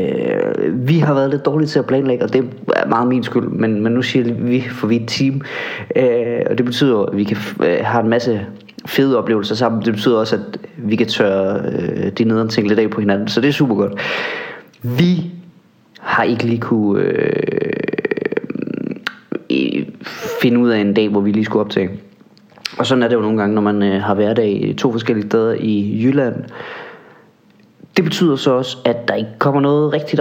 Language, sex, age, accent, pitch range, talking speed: English, male, 30-49, Danish, 110-140 Hz, 190 wpm